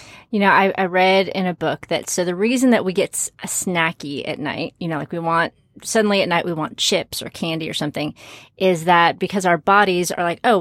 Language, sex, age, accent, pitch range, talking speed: English, female, 30-49, American, 165-205 Hz, 230 wpm